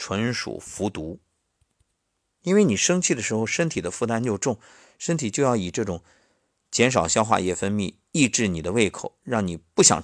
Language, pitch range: Chinese, 90-120 Hz